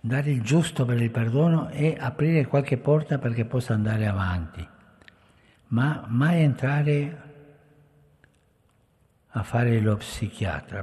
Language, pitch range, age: Italian, 105-145 Hz, 60-79